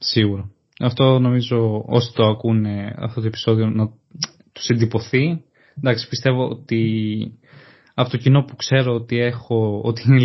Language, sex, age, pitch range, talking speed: Greek, male, 20-39, 110-125 Hz, 140 wpm